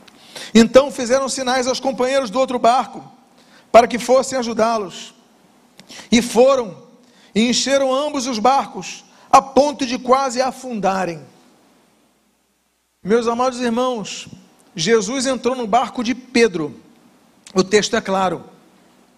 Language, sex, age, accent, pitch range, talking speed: Portuguese, male, 50-69, Brazilian, 235-280 Hz, 115 wpm